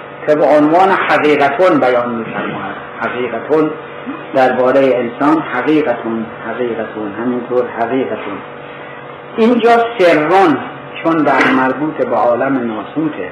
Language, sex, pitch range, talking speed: Persian, male, 125-170 Hz, 90 wpm